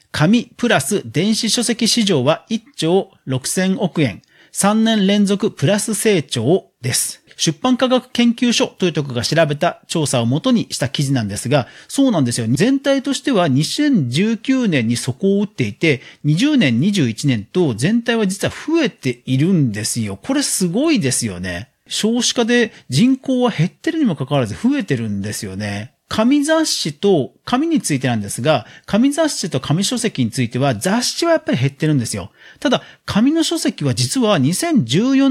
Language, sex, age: Japanese, male, 40-59